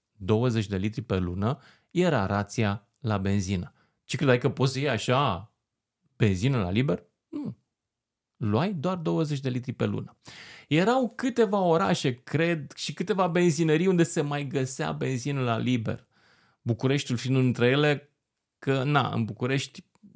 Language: Romanian